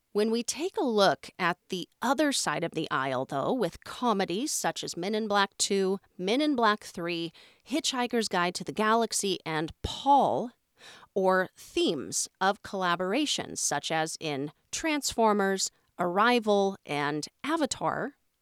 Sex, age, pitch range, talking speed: female, 40-59, 180-255 Hz, 140 wpm